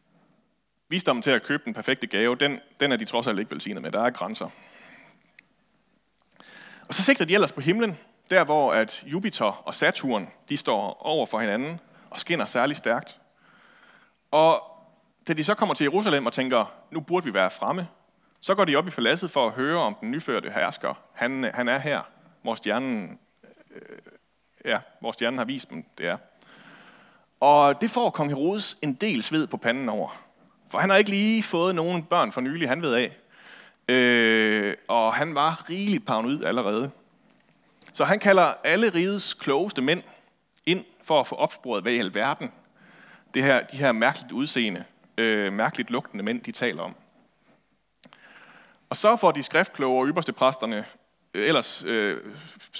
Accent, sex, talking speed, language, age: native, male, 170 wpm, Danish, 30-49